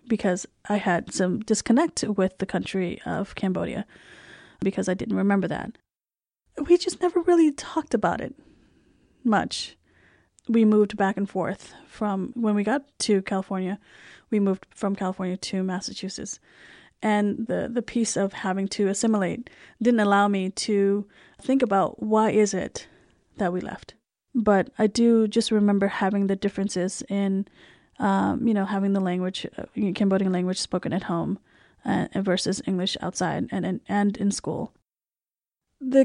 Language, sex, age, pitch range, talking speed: English, female, 30-49, 195-230 Hz, 150 wpm